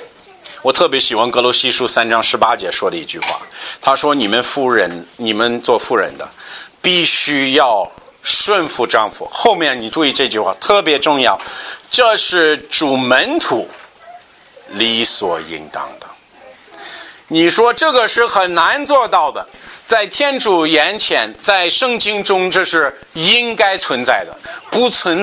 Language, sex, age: Chinese, male, 50-69